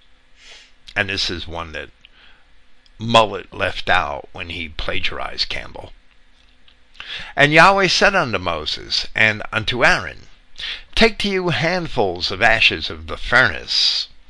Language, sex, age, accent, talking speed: English, male, 60-79, American, 120 wpm